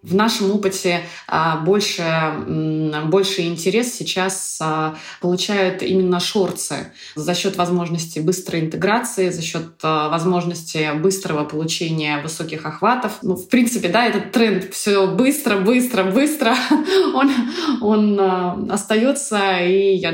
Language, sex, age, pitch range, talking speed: Russian, female, 20-39, 165-200 Hz, 110 wpm